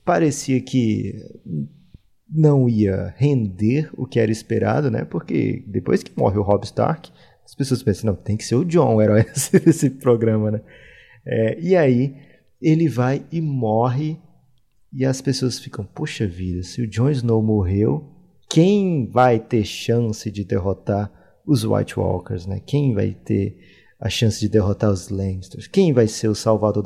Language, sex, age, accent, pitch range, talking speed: Portuguese, male, 30-49, Brazilian, 110-160 Hz, 165 wpm